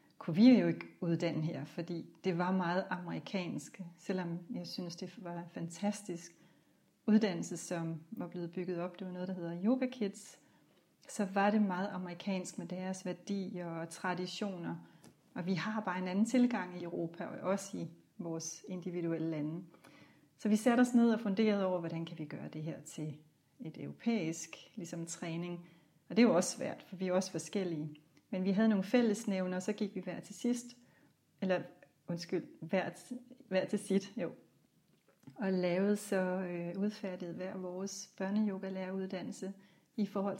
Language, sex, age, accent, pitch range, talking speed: Danish, female, 30-49, native, 170-200 Hz, 170 wpm